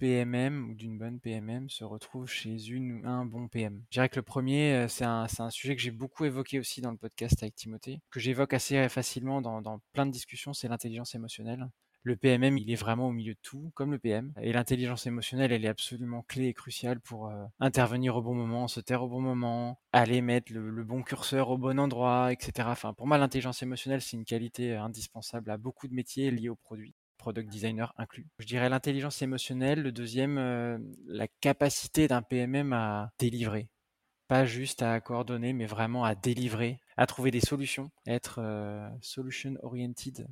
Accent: French